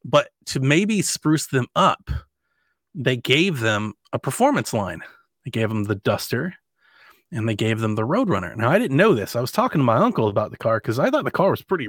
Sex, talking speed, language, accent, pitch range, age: male, 220 wpm, English, American, 110-140 Hz, 30-49